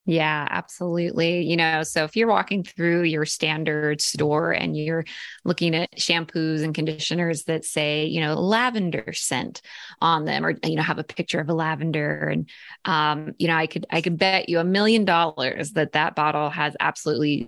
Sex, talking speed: female, 185 wpm